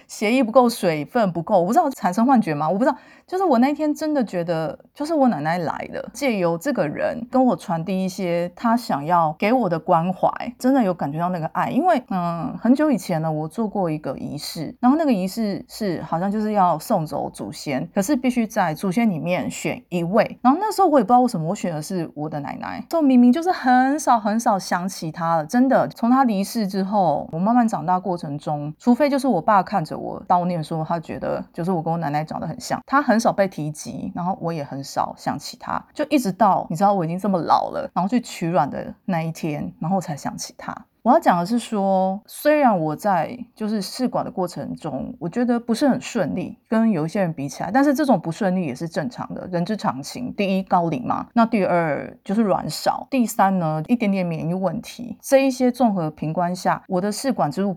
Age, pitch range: 30-49, 170-245 Hz